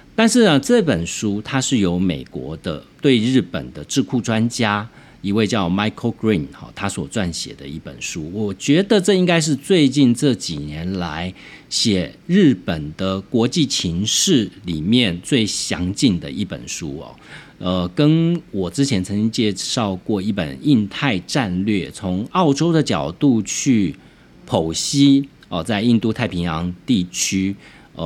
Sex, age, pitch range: male, 50-69, 90-140 Hz